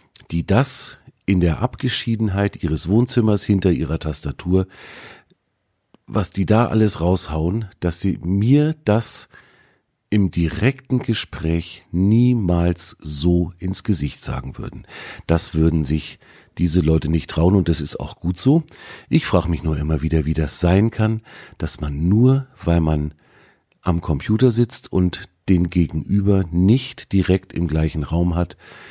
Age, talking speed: 50-69, 140 wpm